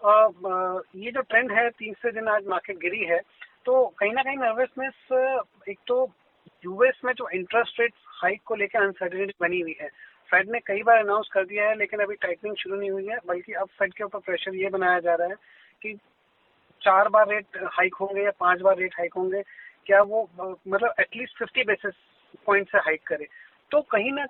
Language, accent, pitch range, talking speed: Hindi, native, 185-235 Hz, 205 wpm